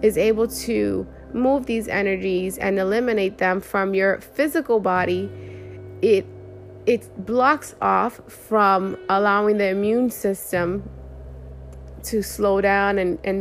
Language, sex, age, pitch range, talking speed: English, female, 20-39, 175-205 Hz, 120 wpm